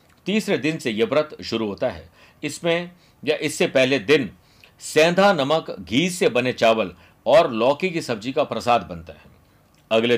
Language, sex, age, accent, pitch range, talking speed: Hindi, male, 50-69, native, 115-160 Hz, 165 wpm